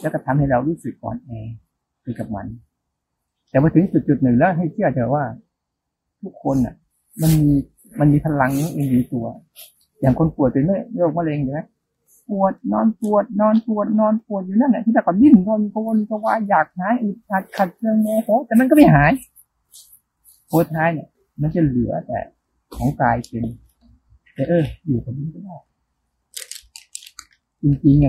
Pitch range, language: 130-205 Hz, Thai